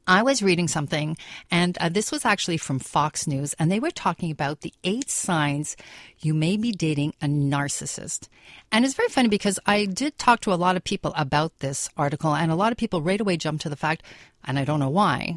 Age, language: 40-59, English